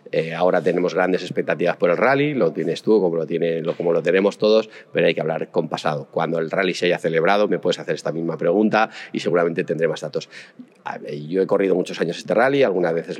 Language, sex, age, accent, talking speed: Spanish, male, 30-49, Spanish, 235 wpm